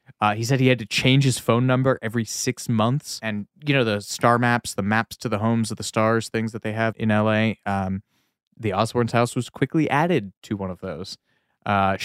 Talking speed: 225 wpm